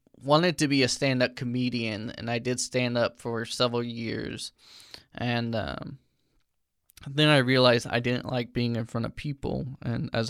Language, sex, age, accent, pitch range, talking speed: English, male, 10-29, American, 120-140 Hz, 165 wpm